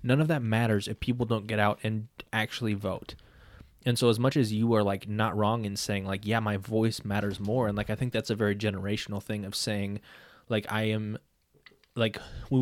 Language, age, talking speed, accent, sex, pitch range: English, 20-39, 220 wpm, American, male, 100-115 Hz